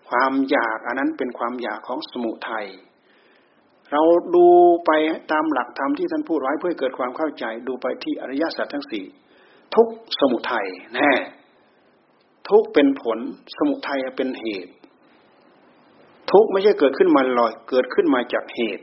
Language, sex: Thai, male